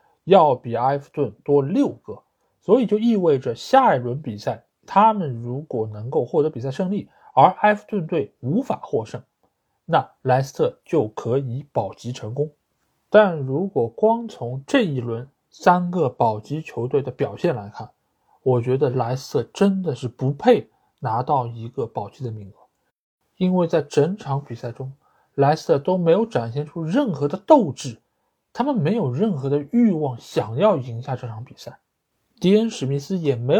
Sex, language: male, Chinese